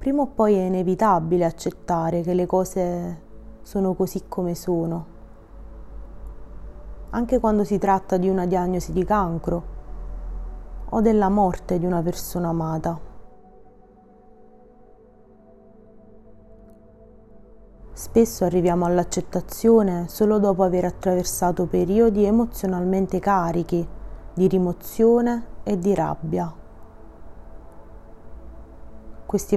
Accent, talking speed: native, 90 wpm